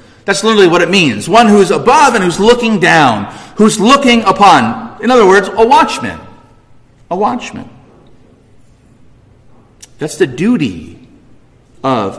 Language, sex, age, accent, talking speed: English, male, 40-59, American, 130 wpm